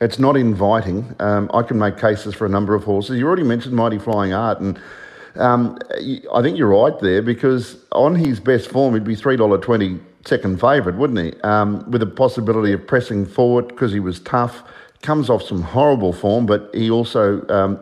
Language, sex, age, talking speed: English, male, 50-69, 195 wpm